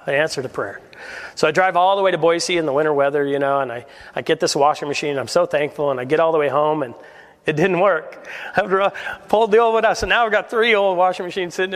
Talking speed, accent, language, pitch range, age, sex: 280 wpm, American, English, 150-190 Hz, 40-59, male